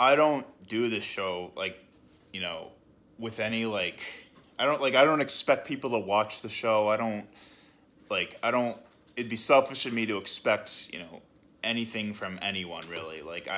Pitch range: 90-110 Hz